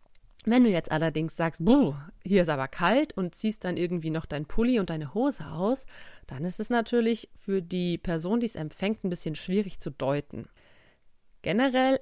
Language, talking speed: German, 180 wpm